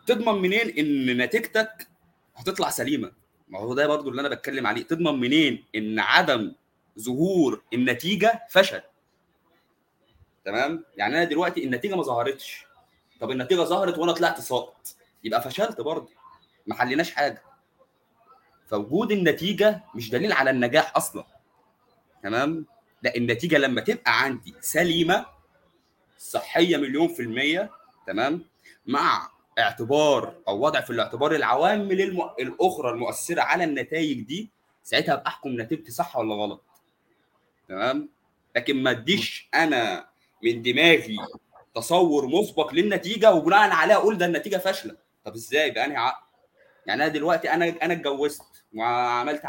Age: 20-39